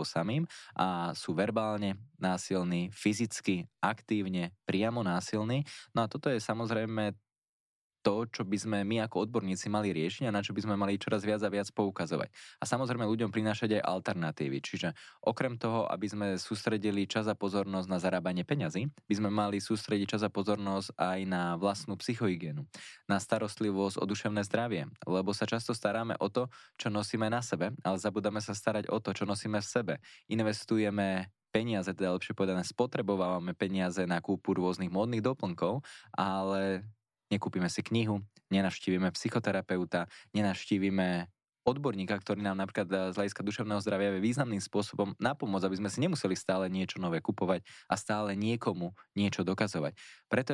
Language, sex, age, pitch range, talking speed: Slovak, male, 20-39, 95-110 Hz, 155 wpm